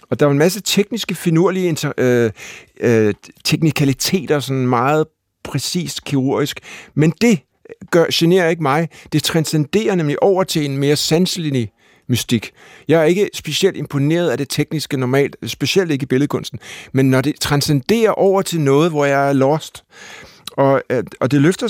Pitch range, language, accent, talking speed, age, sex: 130-170 Hz, Danish, native, 160 wpm, 60-79, male